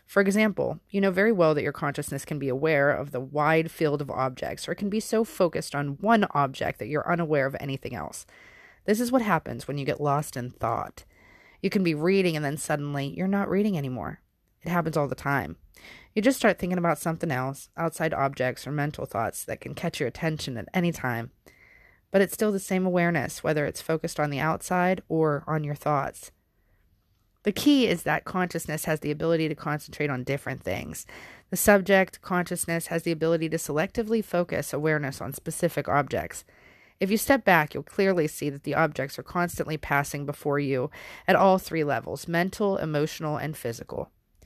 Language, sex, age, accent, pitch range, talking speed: English, female, 30-49, American, 140-185 Hz, 195 wpm